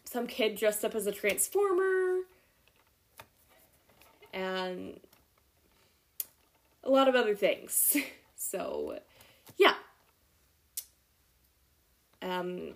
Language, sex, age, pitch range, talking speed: English, female, 10-29, 180-245 Hz, 75 wpm